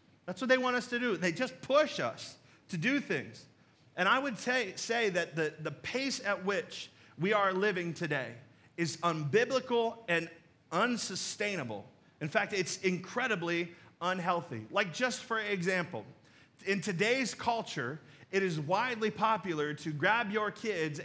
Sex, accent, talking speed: male, American, 150 wpm